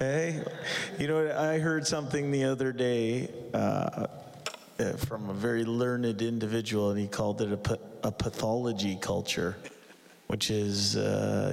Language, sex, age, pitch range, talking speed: English, male, 30-49, 105-120 Hz, 125 wpm